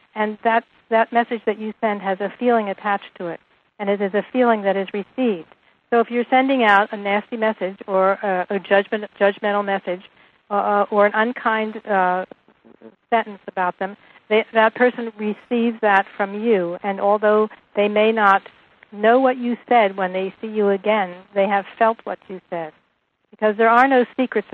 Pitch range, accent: 195-225 Hz, American